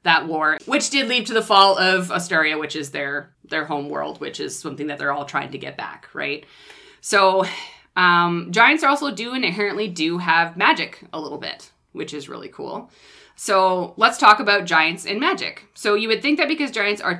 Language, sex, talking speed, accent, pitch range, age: English, female, 210 wpm, American, 160-220 Hz, 20-39